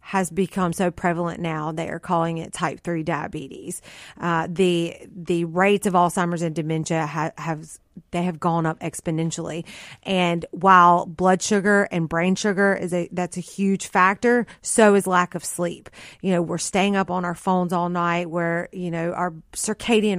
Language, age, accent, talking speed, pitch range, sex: English, 30-49, American, 175 wpm, 170-195 Hz, female